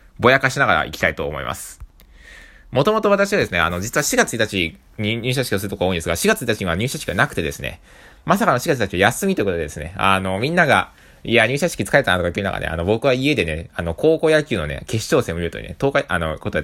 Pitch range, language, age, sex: 80-125 Hz, Japanese, 20-39, male